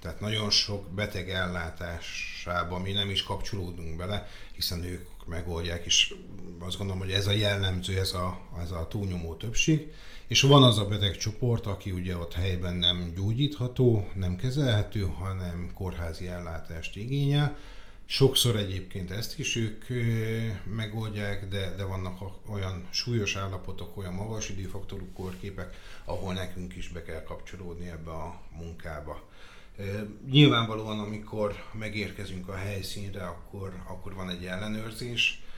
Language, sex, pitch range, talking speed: Hungarian, male, 90-105 Hz, 135 wpm